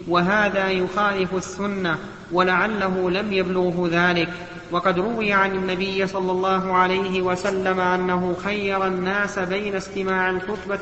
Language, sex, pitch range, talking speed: Arabic, male, 185-200 Hz, 115 wpm